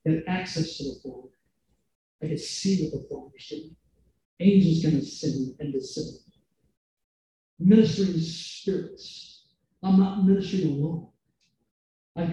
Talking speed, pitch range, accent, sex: 110 wpm, 135-195 Hz, American, male